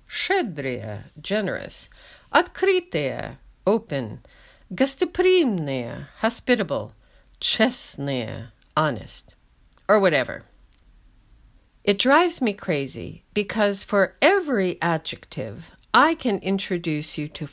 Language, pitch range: English, 150-225 Hz